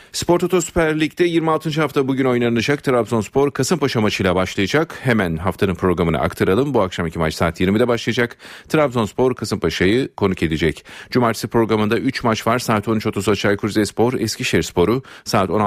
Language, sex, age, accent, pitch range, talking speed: Turkish, male, 40-59, native, 100-130 Hz, 140 wpm